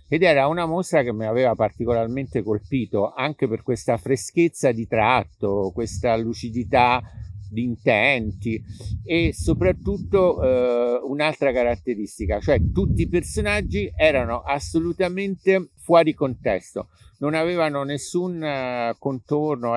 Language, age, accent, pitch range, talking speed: Italian, 50-69, native, 110-155 Hz, 105 wpm